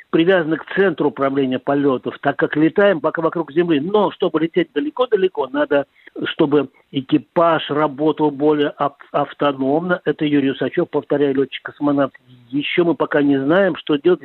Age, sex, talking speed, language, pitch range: 50-69, male, 145 wpm, Russian, 145-180 Hz